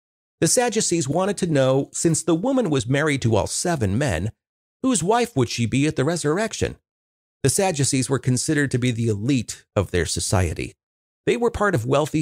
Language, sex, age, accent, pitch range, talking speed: English, male, 50-69, American, 110-150 Hz, 185 wpm